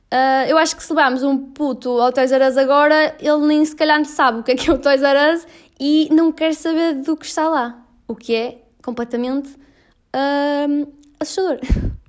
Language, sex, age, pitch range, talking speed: Portuguese, female, 10-29, 220-285 Hz, 195 wpm